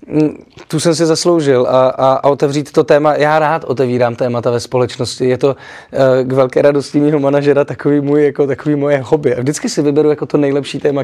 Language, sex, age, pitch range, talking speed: Czech, male, 20-39, 130-150 Hz, 205 wpm